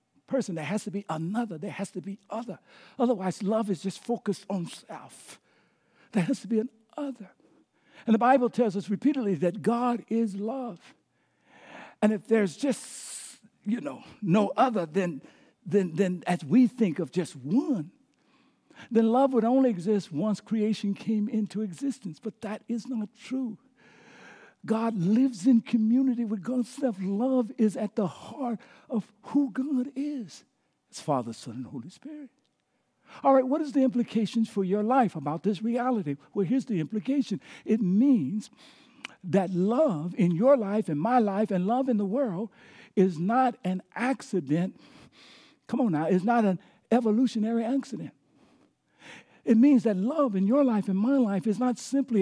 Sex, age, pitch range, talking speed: male, 60-79, 195-255 Hz, 165 wpm